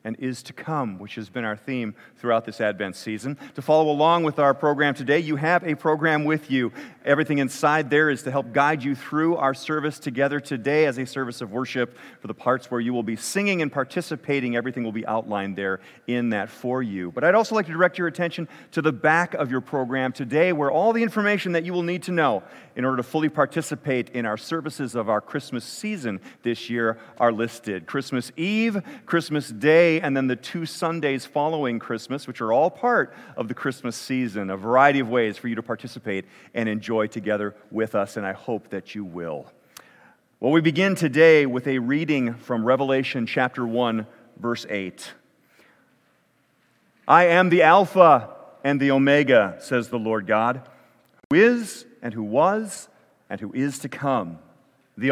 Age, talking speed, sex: 40-59, 195 wpm, male